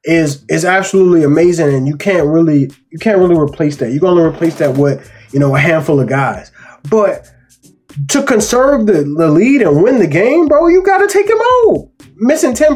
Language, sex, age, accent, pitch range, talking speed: English, male, 20-39, American, 150-205 Hz, 200 wpm